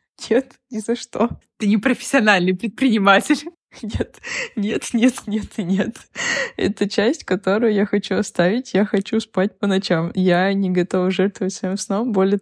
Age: 20-39